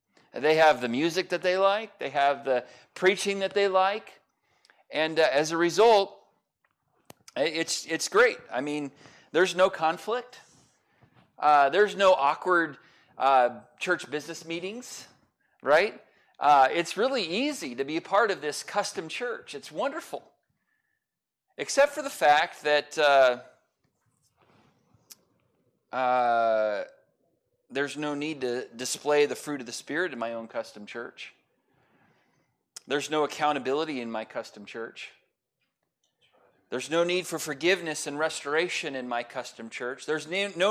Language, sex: English, male